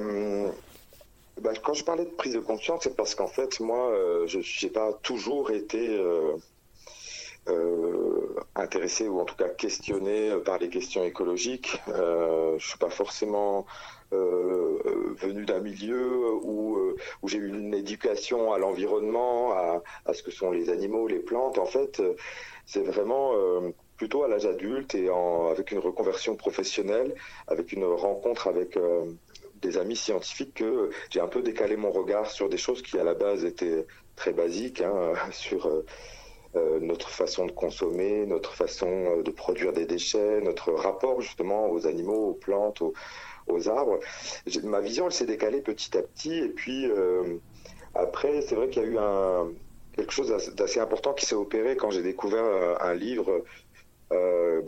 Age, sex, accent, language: 40-59, male, French, French